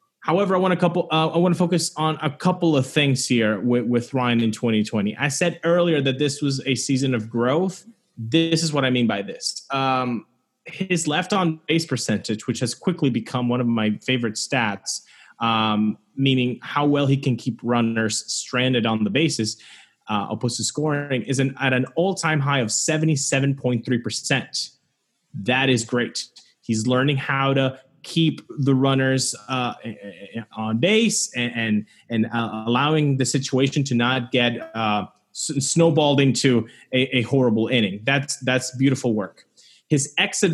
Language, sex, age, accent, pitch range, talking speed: English, male, 30-49, American, 120-150 Hz, 165 wpm